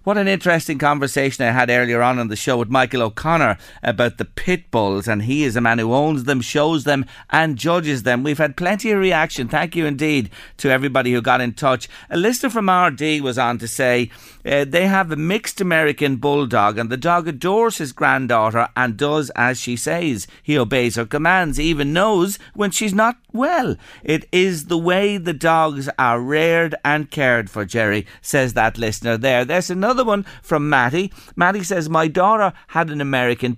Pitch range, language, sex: 120-170 Hz, English, male